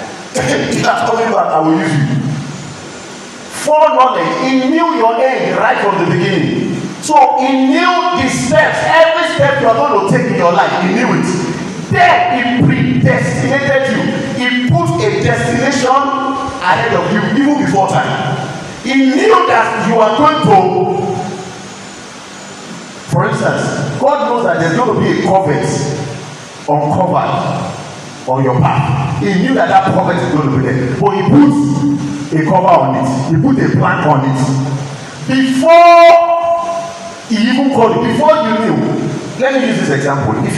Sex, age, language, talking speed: male, 40-59, English, 165 wpm